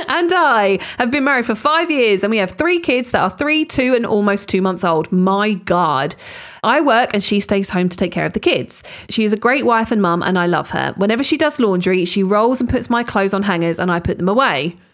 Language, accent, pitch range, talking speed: English, British, 180-245 Hz, 255 wpm